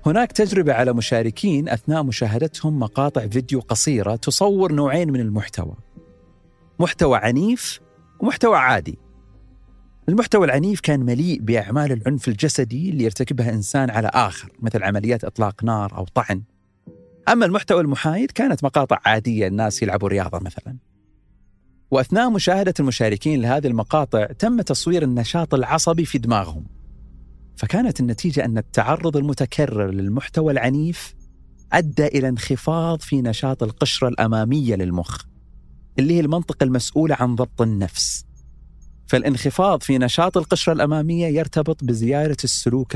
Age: 40-59